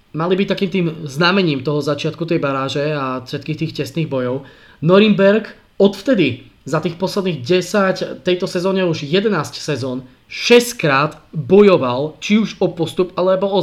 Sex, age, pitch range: male, 20-39, 140-180 Hz